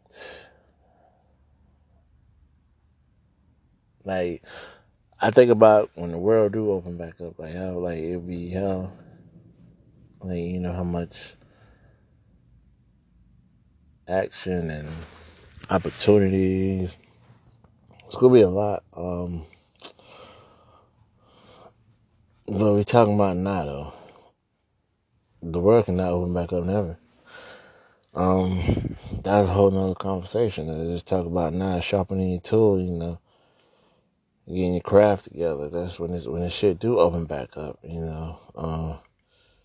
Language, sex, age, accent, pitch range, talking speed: English, male, 20-39, American, 80-100 Hz, 115 wpm